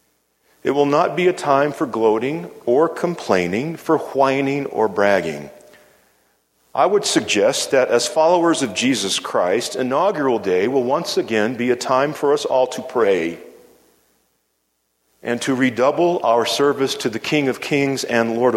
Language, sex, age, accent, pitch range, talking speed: English, male, 50-69, American, 135-215 Hz, 155 wpm